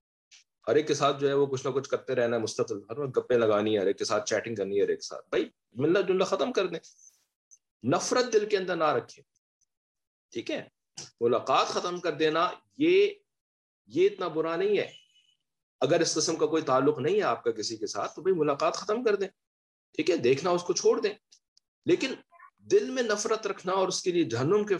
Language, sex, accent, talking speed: English, male, Indian, 185 wpm